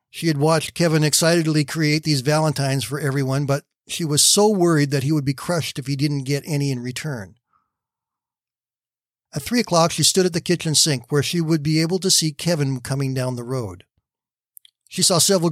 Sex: male